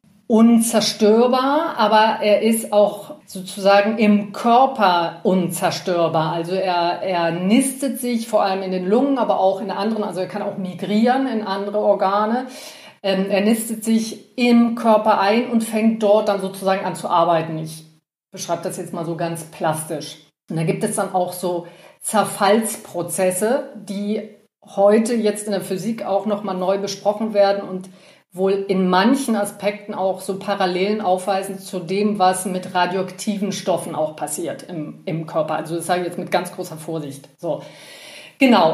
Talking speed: 160 wpm